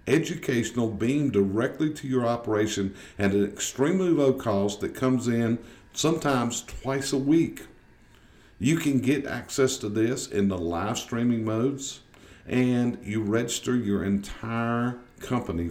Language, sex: English, male